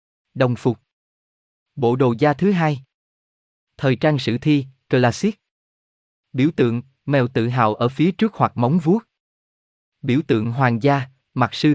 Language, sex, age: Vietnamese, male, 20-39